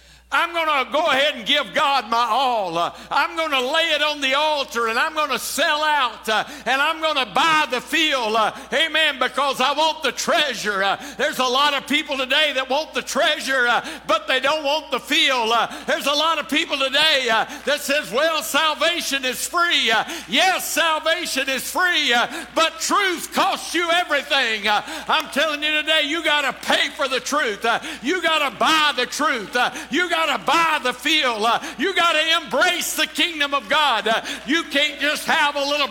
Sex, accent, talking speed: male, American, 185 wpm